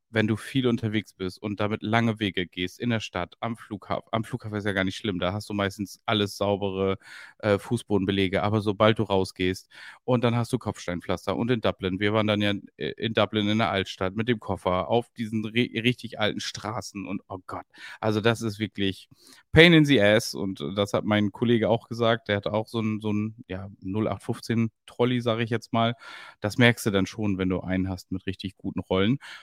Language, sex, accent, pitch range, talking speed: German, male, German, 100-115 Hz, 215 wpm